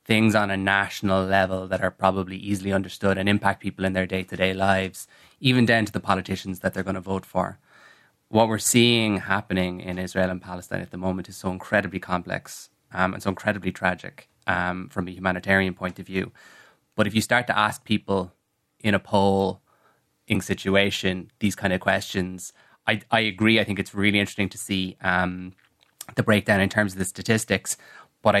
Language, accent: English, Irish